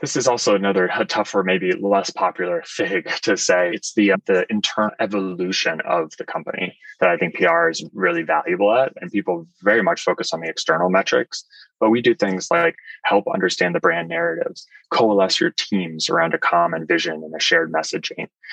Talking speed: 185 wpm